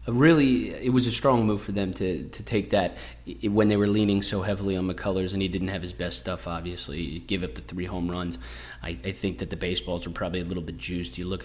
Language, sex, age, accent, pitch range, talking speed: English, male, 30-49, American, 90-105 Hz, 260 wpm